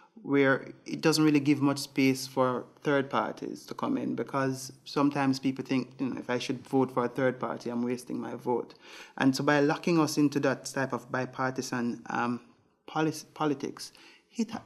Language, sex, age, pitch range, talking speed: English, male, 30-49, 120-140 Hz, 185 wpm